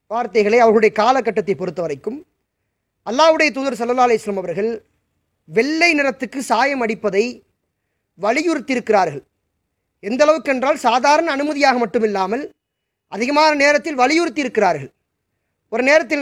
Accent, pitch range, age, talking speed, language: Indian, 220-295 Hz, 20-39, 105 wpm, English